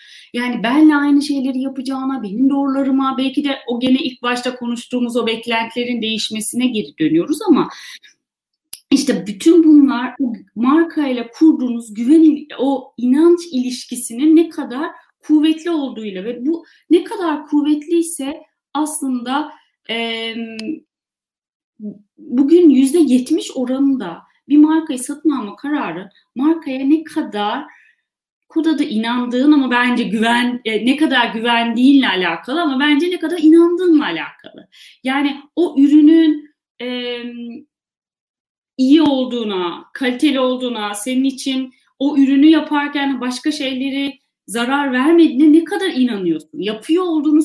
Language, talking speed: Turkish, 115 wpm